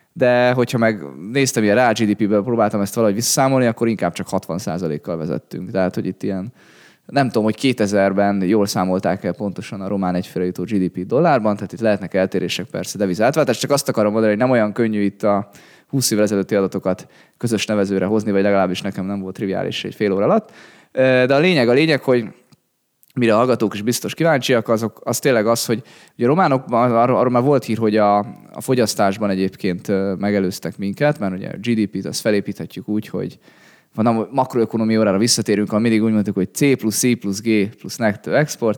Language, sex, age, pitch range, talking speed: Hungarian, male, 20-39, 95-120 Hz, 190 wpm